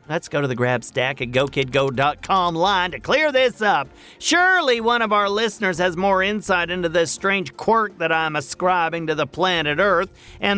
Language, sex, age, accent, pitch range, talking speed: English, male, 40-59, American, 145-230 Hz, 180 wpm